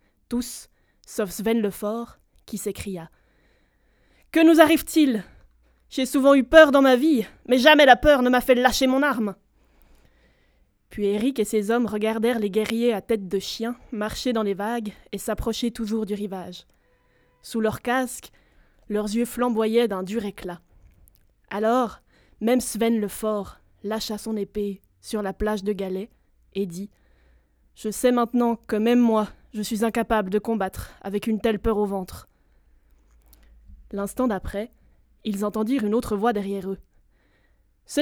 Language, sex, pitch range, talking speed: French, female, 200-240 Hz, 160 wpm